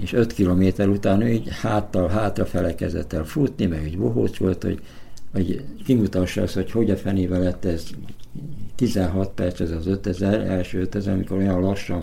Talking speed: 170 wpm